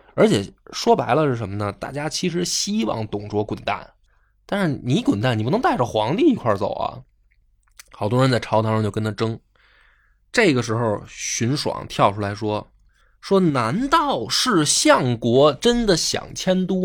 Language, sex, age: Chinese, male, 20-39